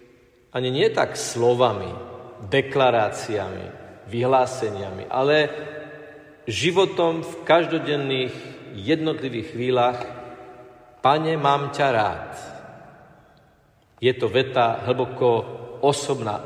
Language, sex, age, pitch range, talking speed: Slovak, male, 50-69, 120-155 Hz, 75 wpm